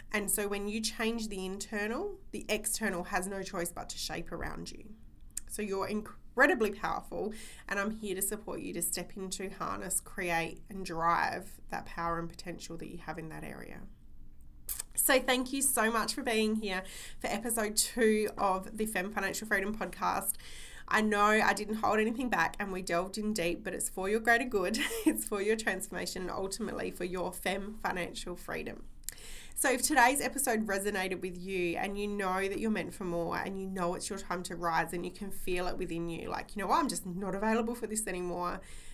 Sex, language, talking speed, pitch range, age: female, English, 200 wpm, 185-220 Hz, 20-39